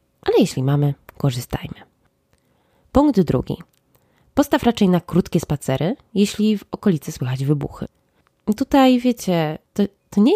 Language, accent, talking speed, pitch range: Polish, native, 120 wpm, 145-200 Hz